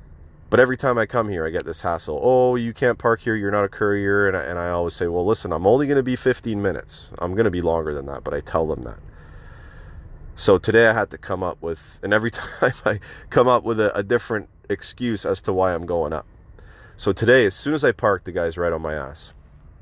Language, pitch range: English, 85-115 Hz